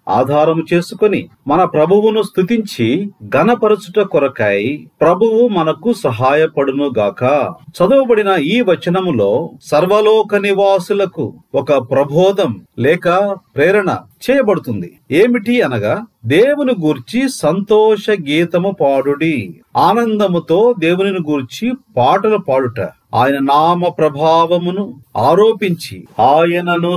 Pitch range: 160-215 Hz